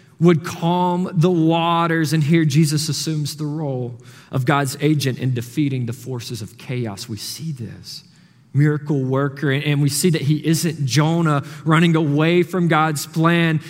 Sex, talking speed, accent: male, 160 wpm, American